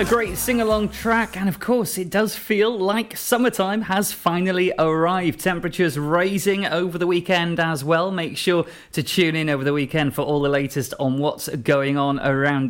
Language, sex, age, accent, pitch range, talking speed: English, male, 30-49, British, 145-190 Hz, 190 wpm